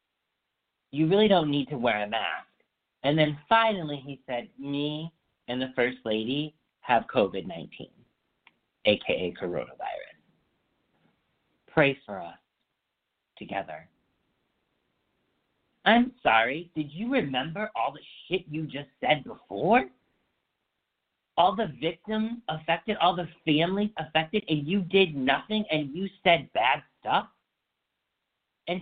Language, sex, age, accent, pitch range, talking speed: English, male, 50-69, American, 130-170 Hz, 115 wpm